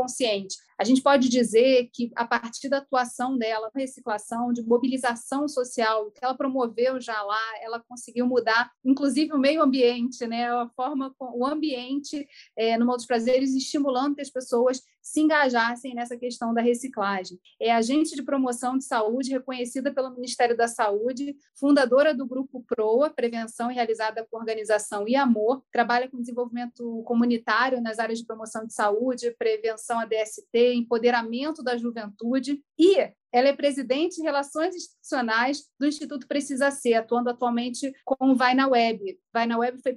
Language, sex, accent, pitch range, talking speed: Portuguese, female, Brazilian, 235-270 Hz, 160 wpm